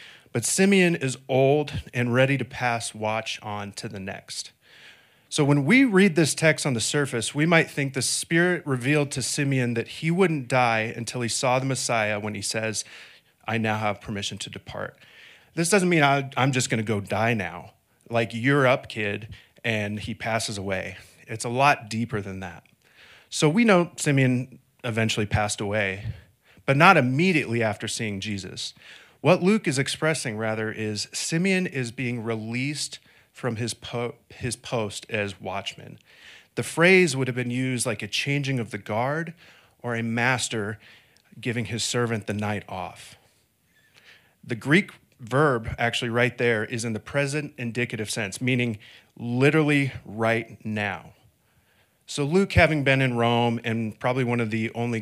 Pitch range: 110-135 Hz